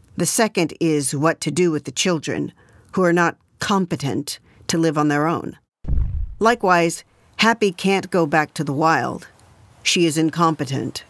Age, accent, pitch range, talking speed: 50-69, American, 155-220 Hz, 155 wpm